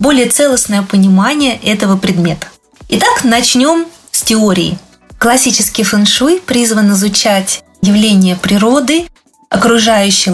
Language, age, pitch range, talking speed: Russian, 20-39, 205-270 Hz, 95 wpm